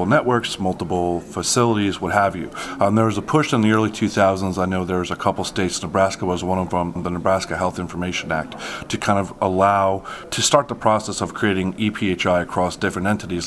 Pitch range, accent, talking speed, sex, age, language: 90-105 Hz, American, 205 wpm, male, 30-49, English